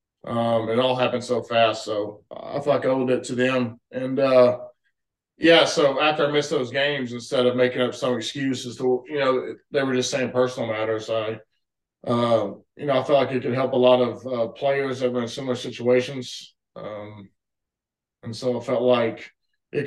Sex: male